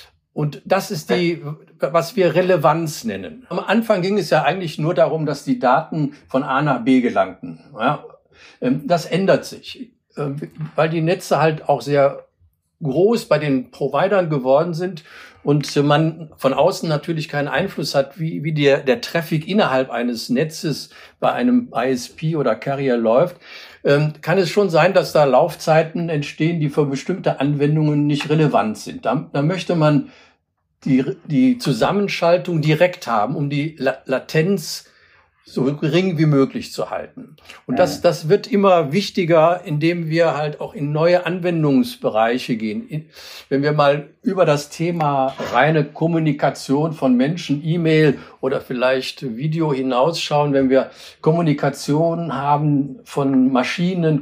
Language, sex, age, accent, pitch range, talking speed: German, male, 50-69, German, 140-170 Hz, 145 wpm